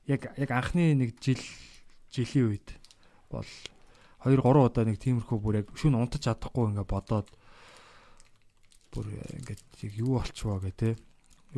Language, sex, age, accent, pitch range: Korean, male, 20-39, native, 105-140 Hz